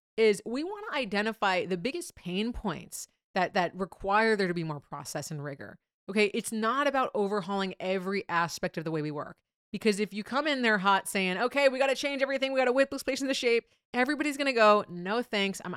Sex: female